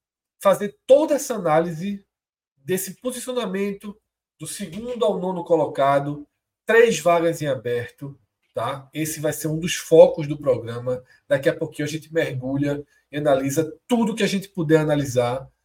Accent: Brazilian